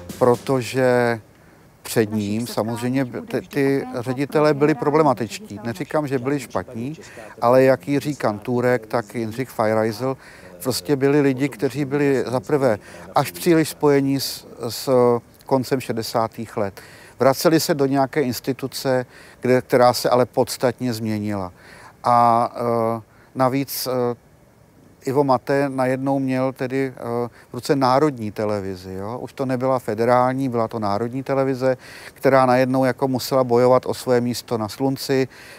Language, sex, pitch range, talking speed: Czech, male, 120-140 Hz, 130 wpm